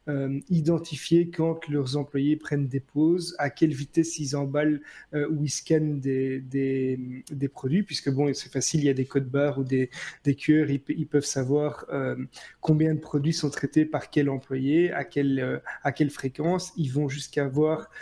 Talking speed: 195 wpm